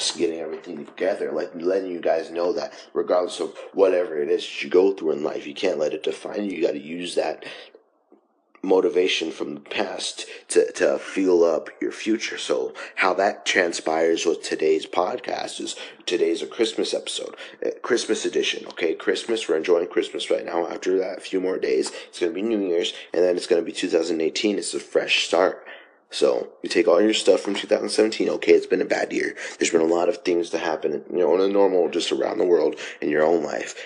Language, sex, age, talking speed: English, male, 30-49, 210 wpm